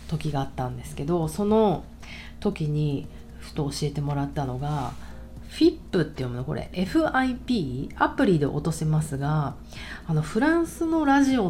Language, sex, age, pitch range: Japanese, female, 40-59, 145-220 Hz